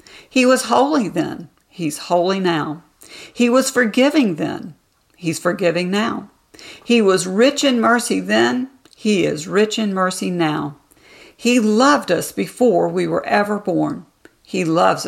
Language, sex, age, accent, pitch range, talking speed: English, female, 60-79, American, 160-215 Hz, 145 wpm